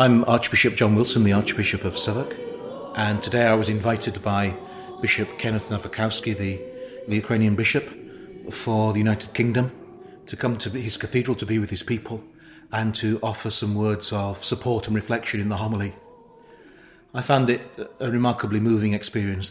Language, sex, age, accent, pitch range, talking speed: English, male, 40-59, British, 105-120 Hz, 165 wpm